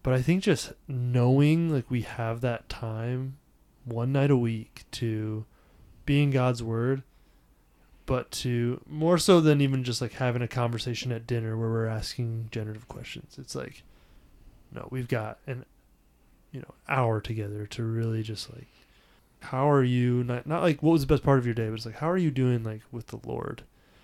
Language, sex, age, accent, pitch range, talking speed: English, male, 20-39, American, 115-130 Hz, 185 wpm